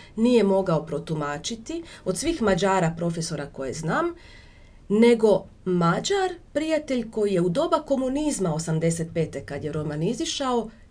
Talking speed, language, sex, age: 120 wpm, Croatian, female, 30-49